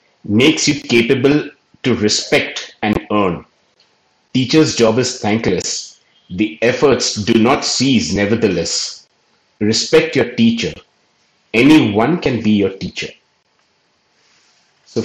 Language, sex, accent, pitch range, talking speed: English, male, Indian, 110-155 Hz, 105 wpm